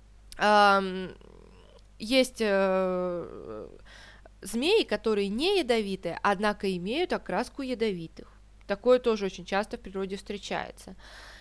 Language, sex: Russian, female